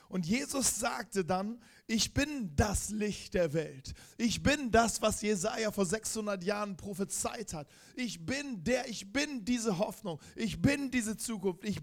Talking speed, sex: 160 wpm, male